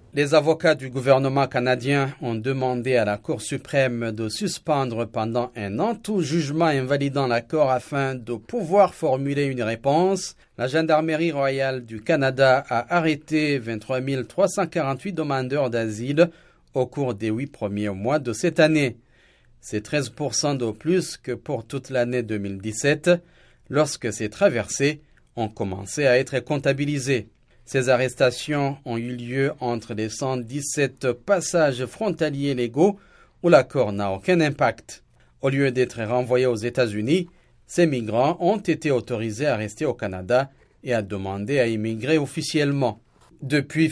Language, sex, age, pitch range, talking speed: French, male, 40-59, 120-155 Hz, 140 wpm